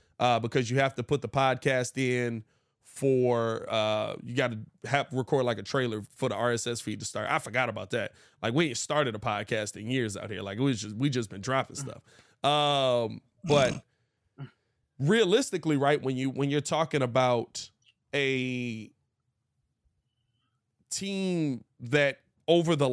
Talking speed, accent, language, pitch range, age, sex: 160 wpm, American, English, 120-165 Hz, 20-39, male